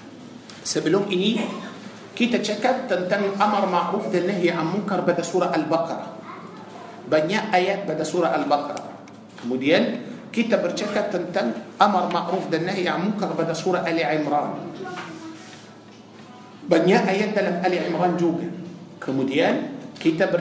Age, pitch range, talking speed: 50-69, 165-200 Hz, 120 wpm